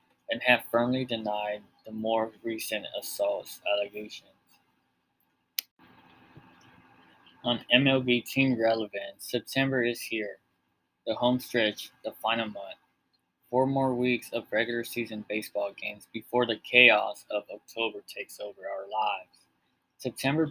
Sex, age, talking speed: male, 20-39, 115 wpm